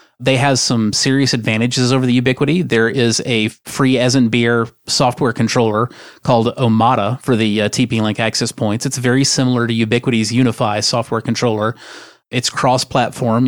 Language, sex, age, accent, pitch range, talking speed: English, male, 30-49, American, 115-140 Hz, 155 wpm